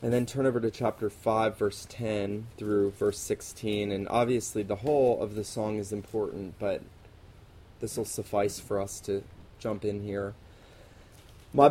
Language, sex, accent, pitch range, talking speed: English, male, American, 105-125 Hz, 165 wpm